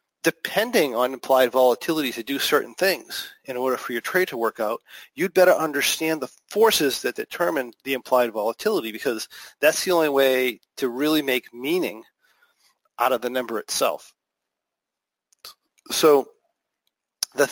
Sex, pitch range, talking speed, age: male, 130-190 Hz, 145 wpm, 40-59